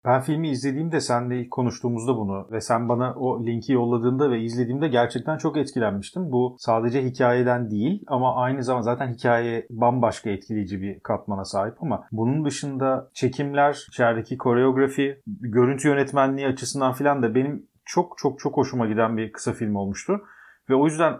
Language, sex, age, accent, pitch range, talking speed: Turkish, male, 40-59, native, 120-135 Hz, 160 wpm